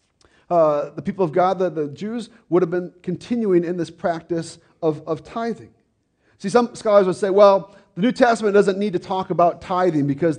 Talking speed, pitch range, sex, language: 195 wpm, 150-195 Hz, male, English